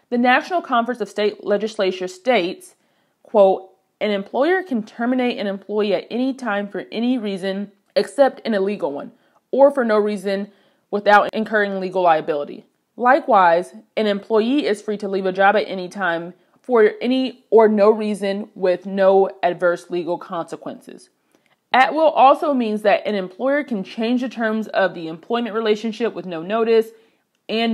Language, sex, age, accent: English, female, 30-49, American